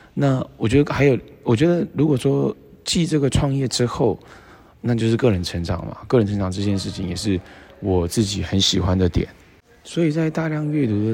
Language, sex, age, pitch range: Chinese, male, 20-39, 95-125 Hz